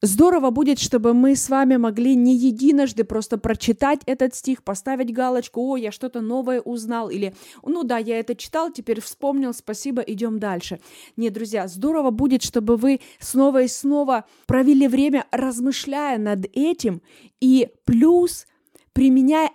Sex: female